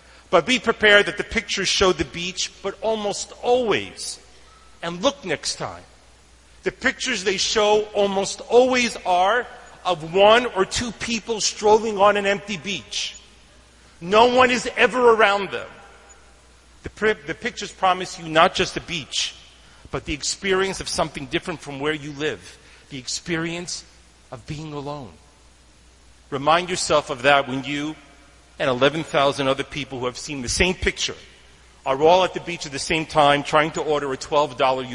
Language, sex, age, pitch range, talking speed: English, male, 40-59, 140-200 Hz, 160 wpm